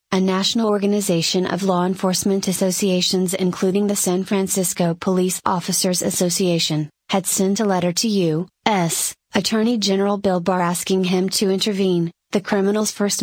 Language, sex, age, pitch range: English, female, 30-49, 180-200 Hz